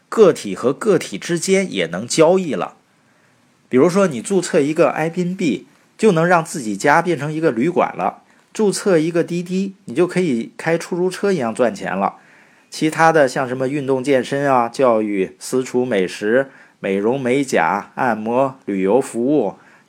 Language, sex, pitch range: Chinese, male, 120-170 Hz